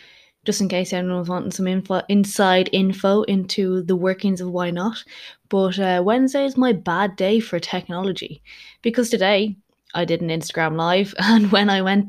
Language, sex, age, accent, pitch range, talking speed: English, female, 20-39, Irish, 180-230 Hz, 180 wpm